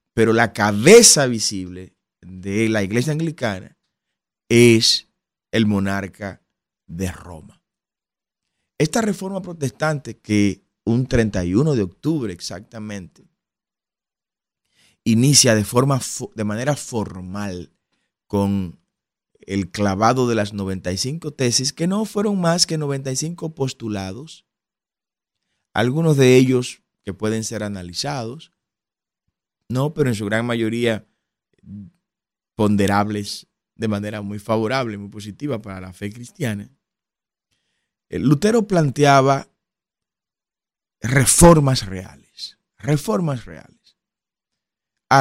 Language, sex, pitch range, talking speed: Spanish, male, 100-135 Hz, 95 wpm